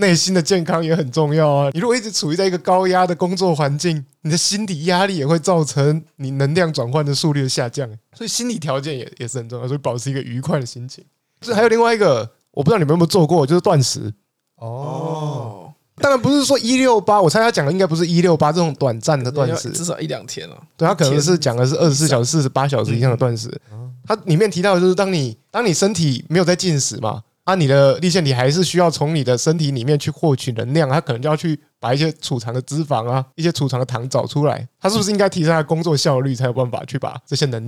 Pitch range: 130-170 Hz